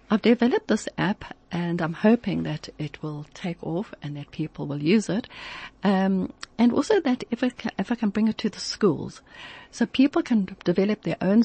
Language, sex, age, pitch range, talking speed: English, female, 60-79, 155-210 Hz, 205 wpm